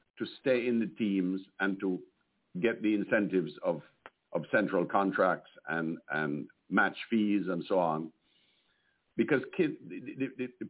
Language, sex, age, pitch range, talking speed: English, male, 60-79, 90-120 Hz, 145 wpm